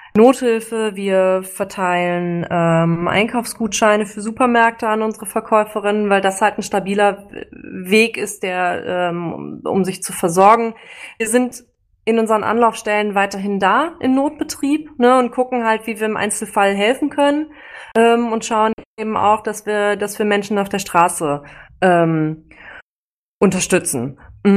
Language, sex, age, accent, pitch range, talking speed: German, female, 20-39, German, 190-235 Hz, 140 wpm